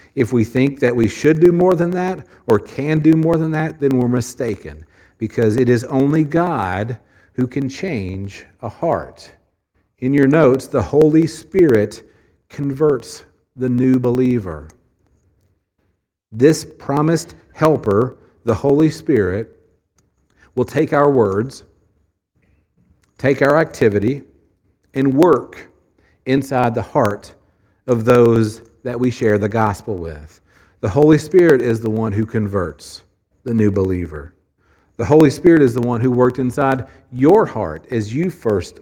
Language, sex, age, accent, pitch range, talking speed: English, male, 50-69, American, 95-135 Hz, 140 wpm